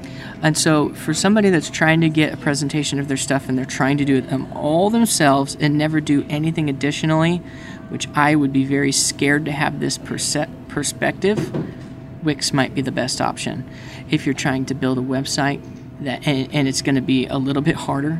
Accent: American